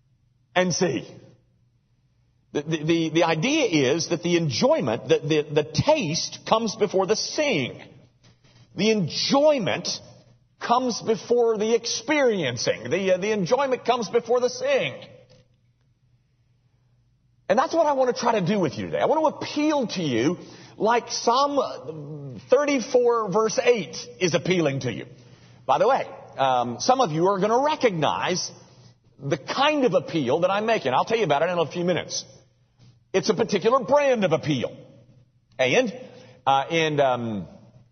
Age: 40-59